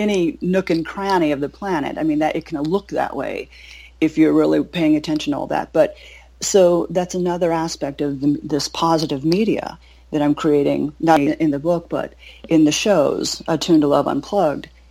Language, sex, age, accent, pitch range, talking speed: English, female, 40-59, American, 145-165 Hz, 195 wpm